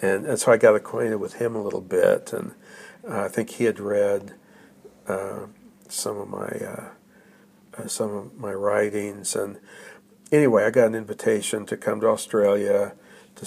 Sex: male